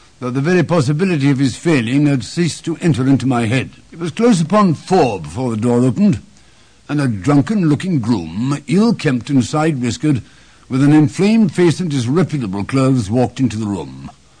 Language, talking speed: English, 170 wpm